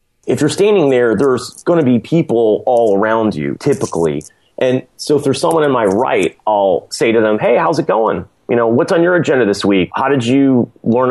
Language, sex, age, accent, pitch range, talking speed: English, male, 30-49, American, 115-160 Hz, 220 wpm